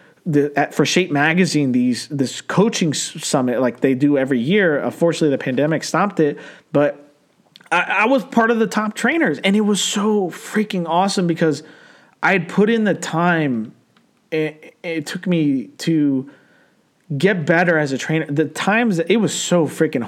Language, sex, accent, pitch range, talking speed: English, male, American, 145-190 Hz, 175 wpm